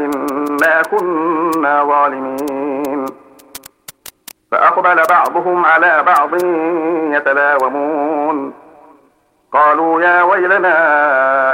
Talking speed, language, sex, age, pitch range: 55 wpm, Arabic, male, 50-69, 145-170 Hz